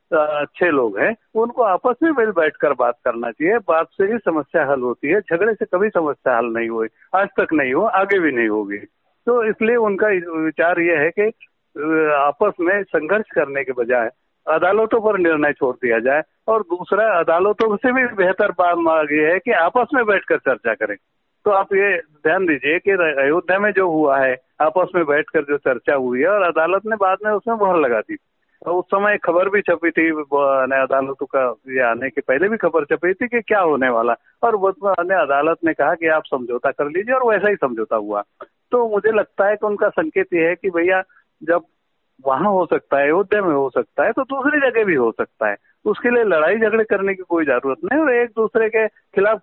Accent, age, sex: native, 60-79, male